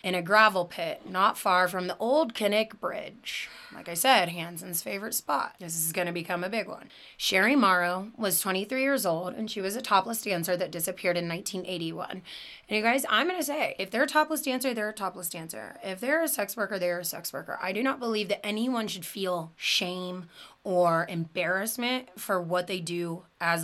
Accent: American